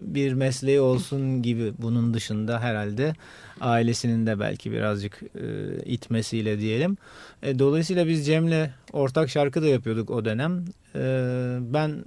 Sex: male